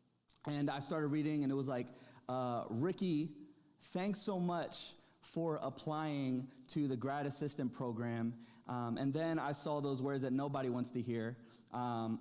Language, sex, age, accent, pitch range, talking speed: English, male, 20-39, American, 125-155 Hz, 160 wpm